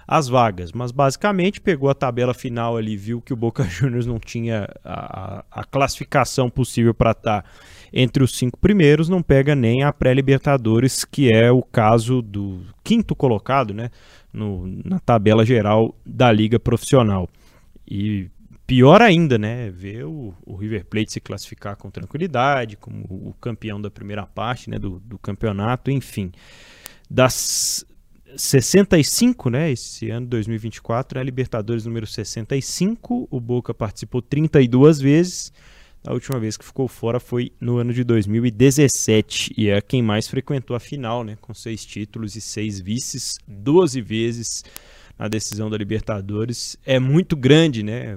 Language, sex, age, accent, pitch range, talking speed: Portuguese, male, 20-39, Brazilian, 110-135 Hz, 150 wpm